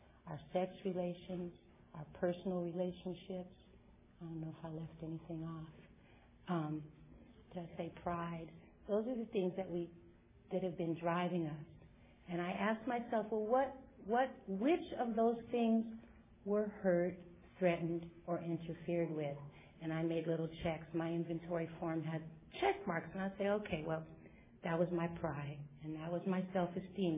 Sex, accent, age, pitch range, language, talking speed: female, American, 50-69, 165-195 Hz, English, 160 wpm